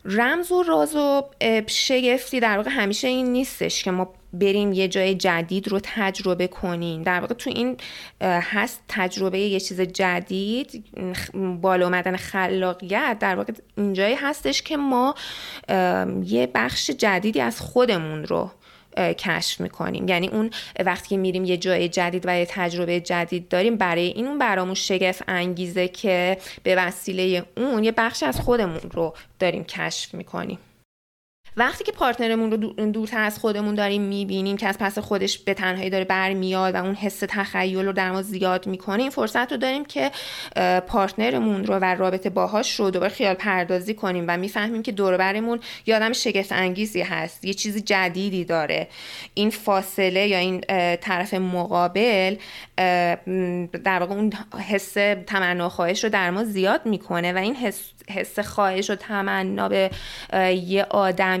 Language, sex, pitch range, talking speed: Persian, female, 185-215 Hz, 150 wpm